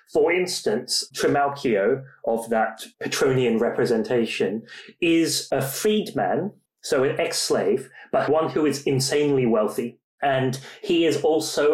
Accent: British